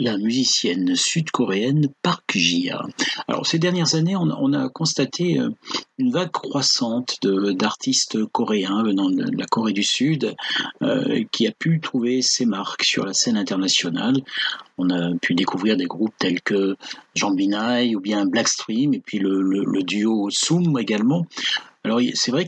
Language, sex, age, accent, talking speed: French, male, 50-69, French, 160 wpm